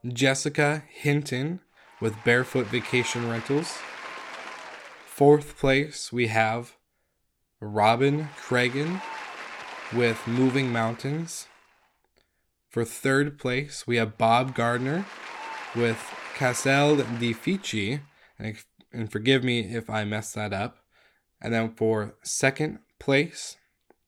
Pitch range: 115-140 Hz